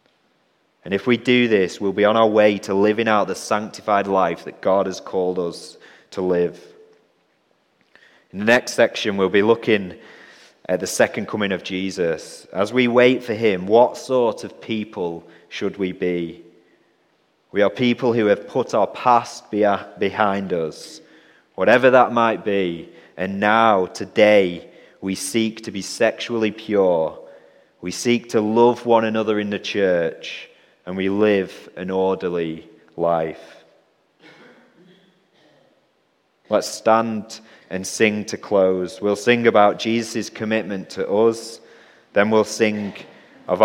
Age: 30-49